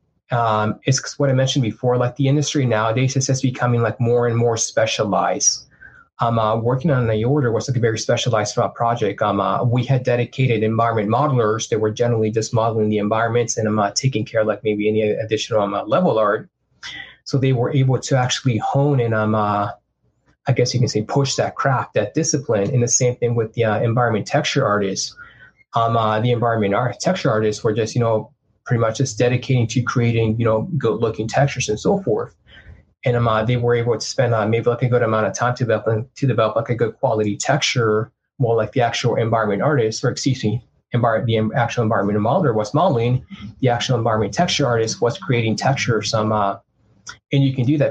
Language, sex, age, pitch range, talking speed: English, male, 20-39, 110-125 Hz, 215 wpm